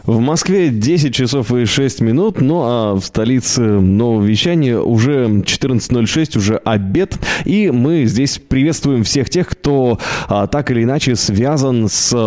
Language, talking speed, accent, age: Russian, 140 wpm, native, 20-39